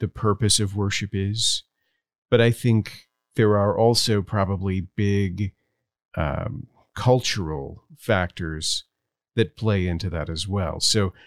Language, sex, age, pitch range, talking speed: English, male, 40-59, 95-115 Hz, 120 wpm